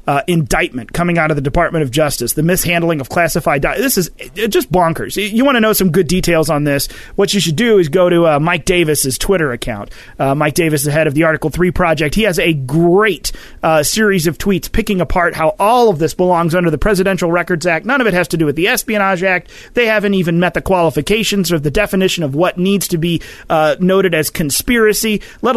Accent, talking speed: American, 240 wpm